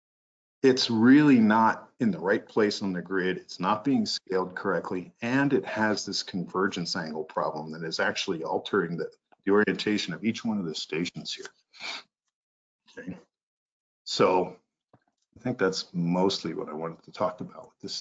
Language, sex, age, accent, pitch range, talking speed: English, male, 50-69, American, 90-120 Hz, 165 wpm